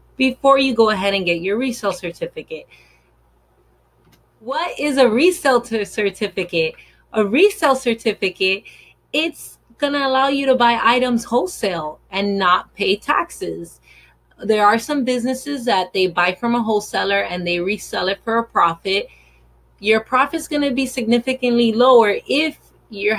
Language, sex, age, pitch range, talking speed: English, female, 30-49, 190-250 Hz, 140 wpm